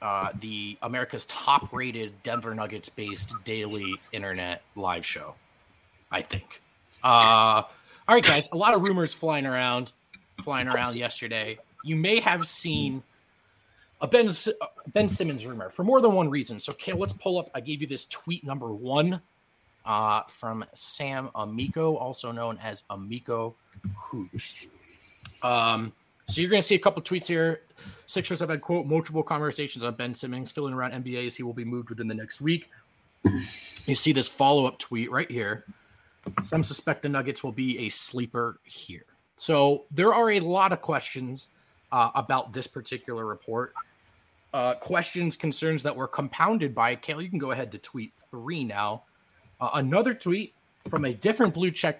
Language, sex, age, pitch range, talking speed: English, male, 30-49, 115-160 Hz, 170 wpm